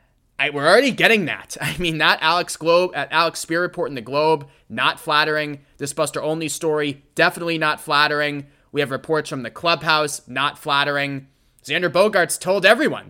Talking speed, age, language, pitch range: 170 wpm, 20-39, English, 125-160 Hz